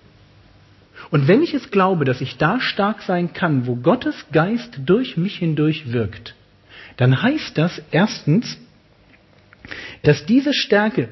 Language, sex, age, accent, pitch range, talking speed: German, male, 40-59, German, 125-200 Hz, 135 wpm